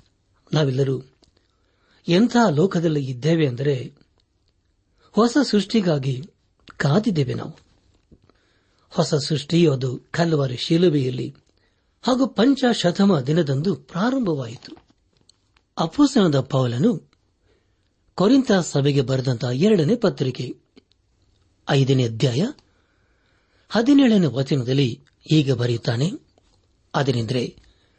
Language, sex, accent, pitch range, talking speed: Kannada, male, native, 105-165 Hz, 65 wpm